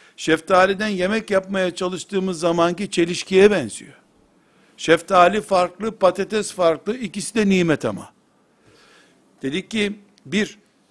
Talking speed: 100 wpm